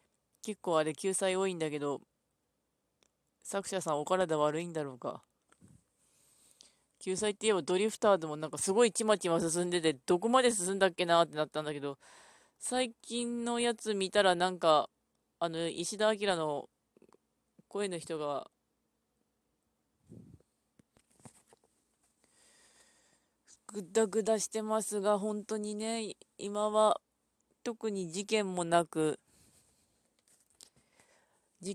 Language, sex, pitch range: Japanese, female, 165-220 Hz